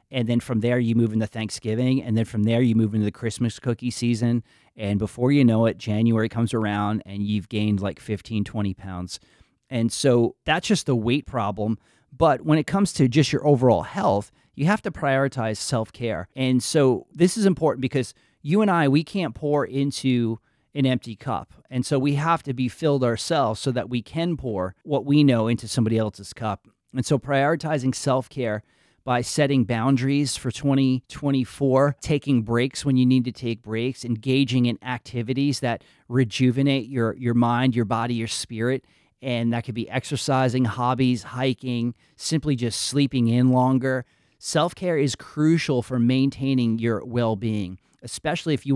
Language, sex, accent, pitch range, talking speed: English, male, American, 110-135 Hz, 175 wpm